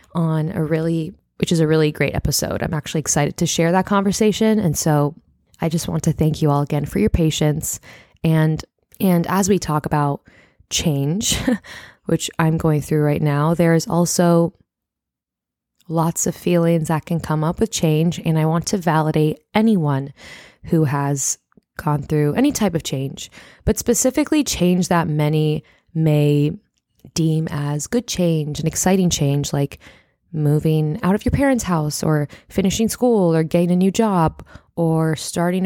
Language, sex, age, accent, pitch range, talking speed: English, female, 20-39, American, 150-190 Hz, 165 wpm